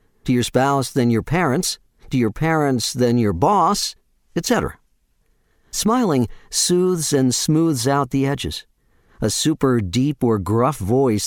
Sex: male